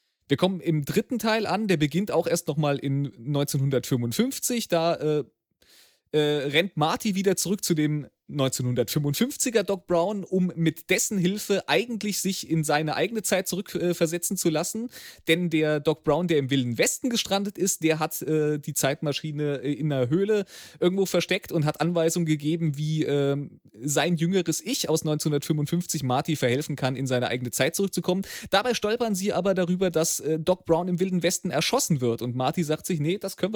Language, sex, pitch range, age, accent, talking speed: German, male, 145-185 Hz, 30-49, German, 175 wpm